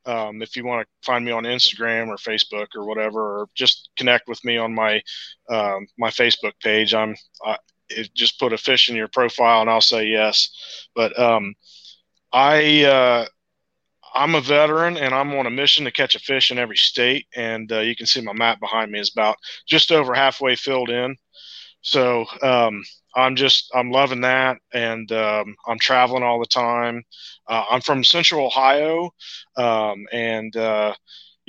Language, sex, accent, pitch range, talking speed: English, male, American, 115-135 Hz, 180 wpm